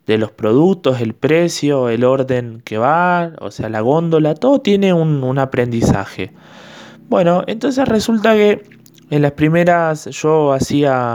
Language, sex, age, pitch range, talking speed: Spanish, male, 20-39, 130-175 Hz, 145 wpm